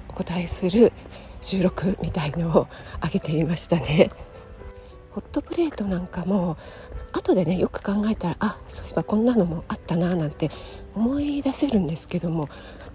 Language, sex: Japanese, female